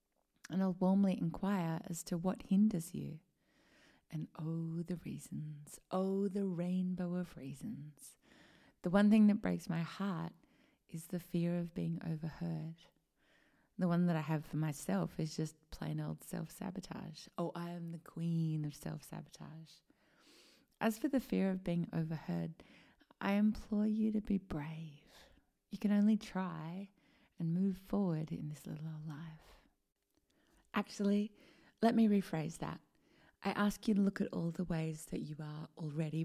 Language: English